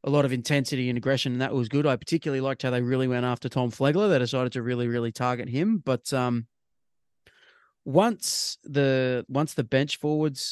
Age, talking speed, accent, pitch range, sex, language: 20-39, 200 wpm, Australian, 125-145 Hz, male, English